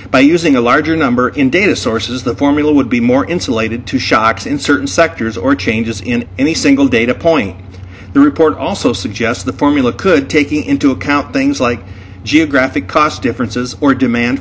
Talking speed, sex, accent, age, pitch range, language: 180 wpm, male, American, 50-69, 110-150 Hz, English